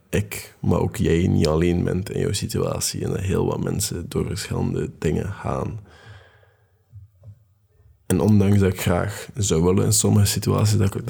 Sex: male